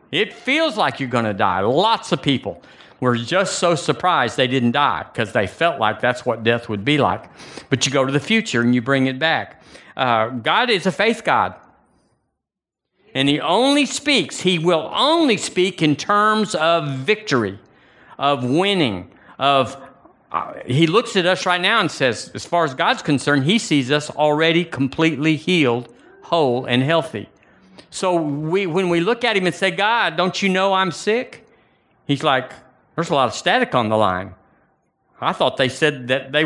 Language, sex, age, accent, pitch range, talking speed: English, male, 50-69, American, 135-195 Hz, 185 wpm